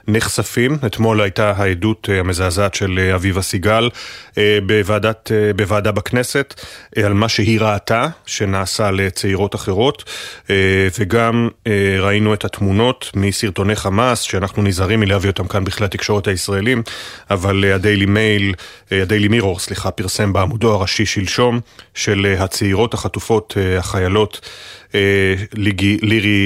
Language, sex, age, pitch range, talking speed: Hebrew, male, 30-49, 100-110 Hz, 105 wpm